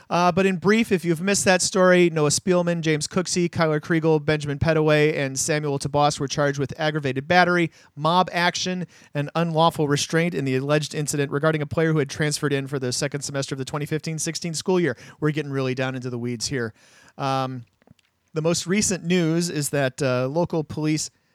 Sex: male